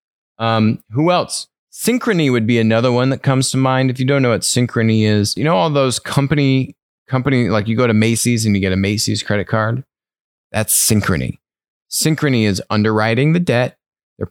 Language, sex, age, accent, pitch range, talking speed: English, male, 30-49, American, 100-130 Hz, 190 wpm